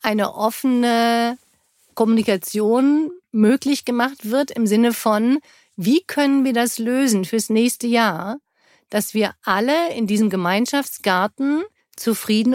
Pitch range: 210-270 Hz